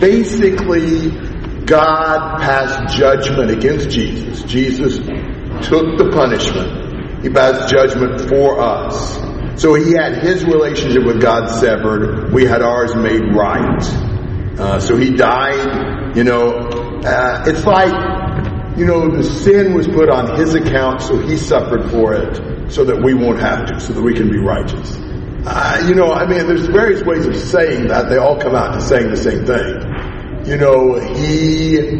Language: English